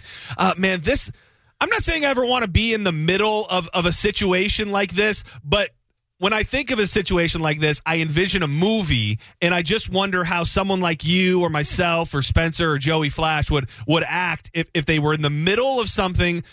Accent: American